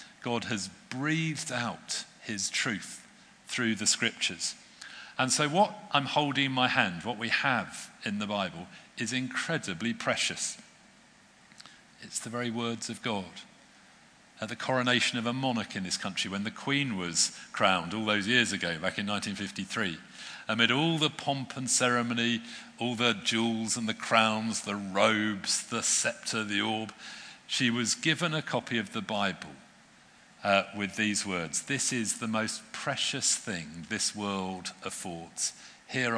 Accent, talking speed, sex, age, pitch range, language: British, 155 wpm, male, 50-69, 105-140 Hz, English